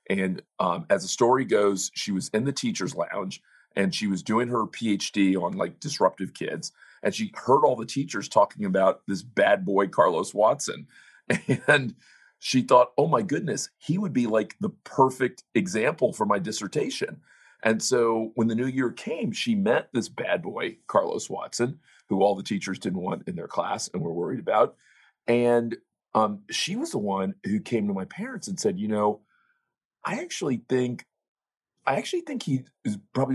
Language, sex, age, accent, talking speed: English, male, 40-59, American, 185 wpm